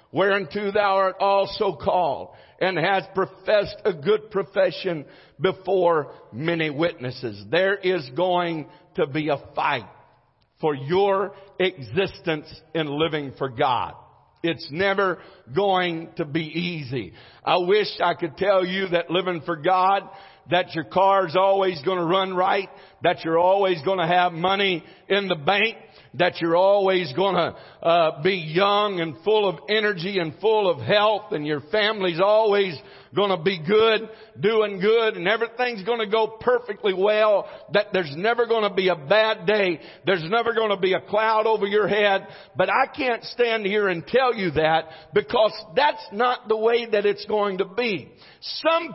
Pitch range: 175-215 Hz